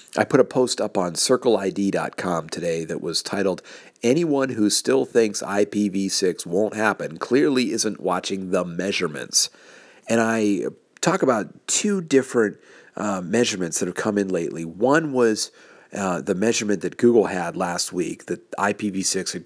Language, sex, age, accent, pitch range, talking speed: English, male, 50-69, American, 95-115 Hz, 150 wpm